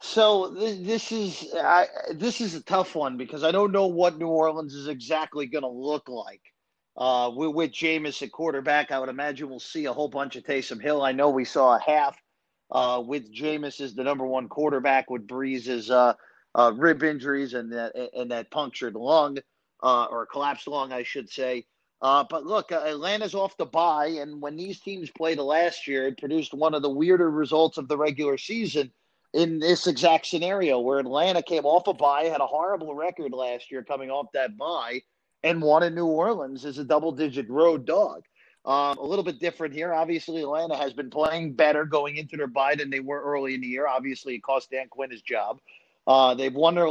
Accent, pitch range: American, 135-160 Hz